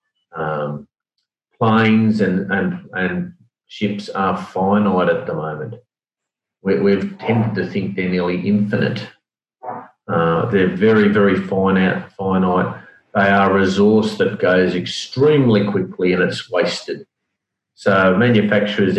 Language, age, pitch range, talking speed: English, 40-59, 95-115 Hz, 115 wpm